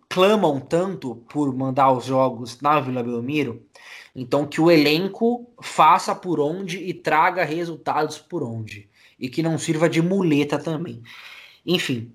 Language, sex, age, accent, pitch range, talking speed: Portuguese, male, 20-39, Brazilian, 130-175 Hz, 145 wpm